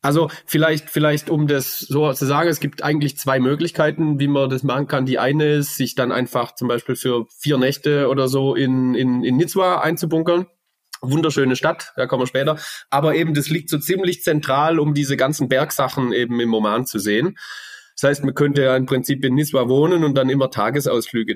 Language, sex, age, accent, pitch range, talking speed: German, male, 30-49, German, 125-150 Hz, 200 wpm